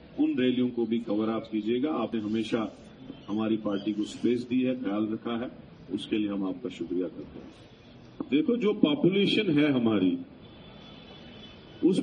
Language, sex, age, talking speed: Urdu, male, 40-59, 170 wpm